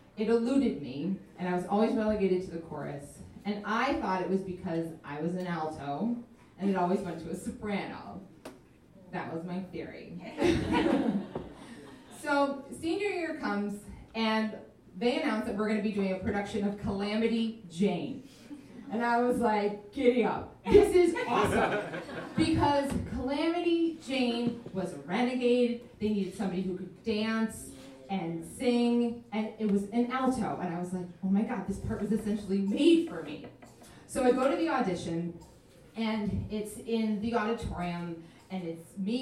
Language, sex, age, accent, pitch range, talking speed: English, female, 30-49, American, 180-240 Hz, 160 wpm